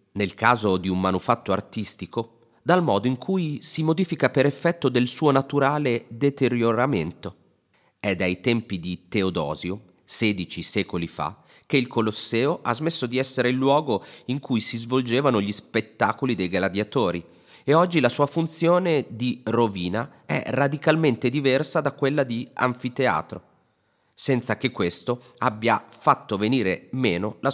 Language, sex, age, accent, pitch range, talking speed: Italian, male, 30-49, native, 105-140 Hz, 140 wpm